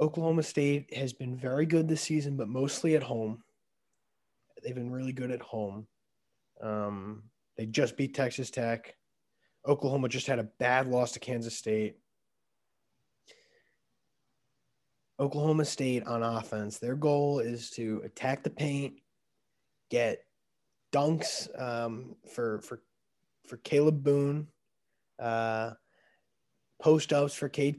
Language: English